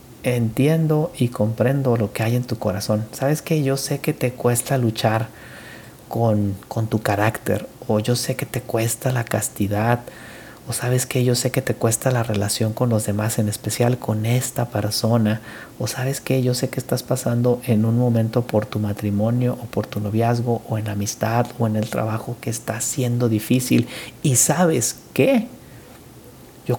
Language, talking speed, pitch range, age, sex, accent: Spanish, 180 wpm, 110-135 Hz, 40-59, male, Mexican